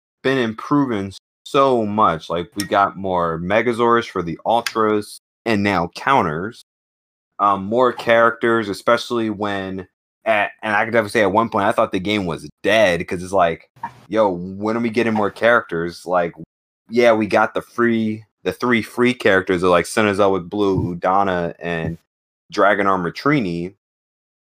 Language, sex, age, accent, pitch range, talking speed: English, male, 20-39, American, 90-120 Hz, 160 wpm